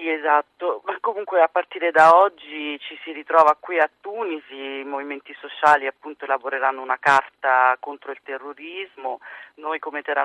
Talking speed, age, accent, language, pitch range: 160 wpm, 30-49, native, Italian, 125-140 Hz